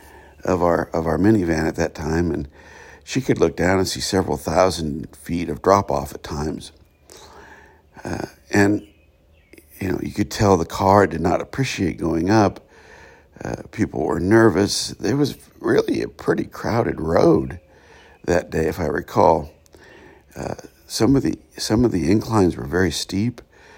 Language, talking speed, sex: English, 160 wpm, male